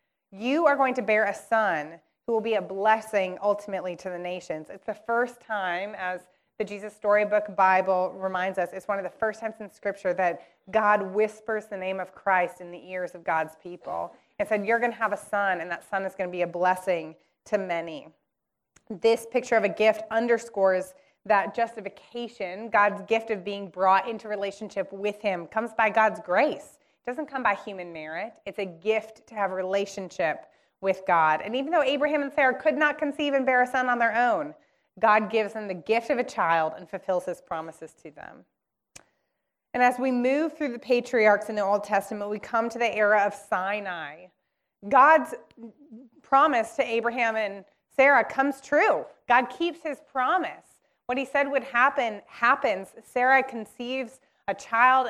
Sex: female